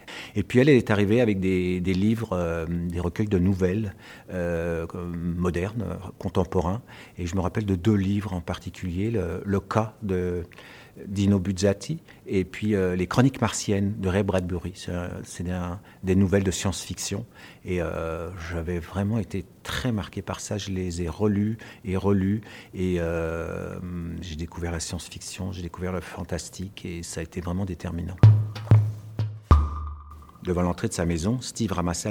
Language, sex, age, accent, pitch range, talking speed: French, male, 50-69, French, 85-105 Hz, 160 wpm